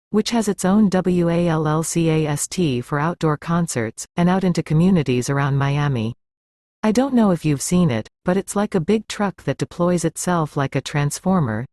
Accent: American